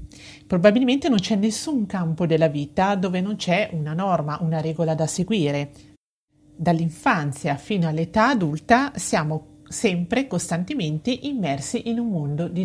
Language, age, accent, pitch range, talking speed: Italian, 40-59, native, 150-200 Hz, 135 wpm